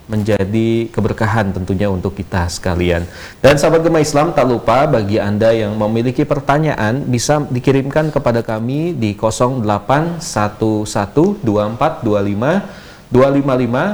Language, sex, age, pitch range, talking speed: Indonesian, male, 30-49, 105-130 Hz, 110 wpm